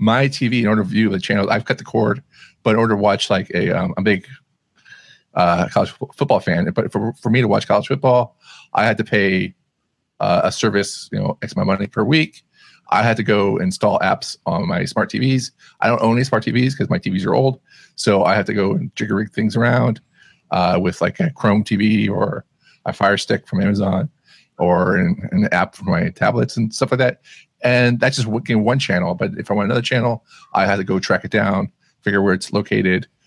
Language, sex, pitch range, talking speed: English, male, 105-130 Hz, 225 wpm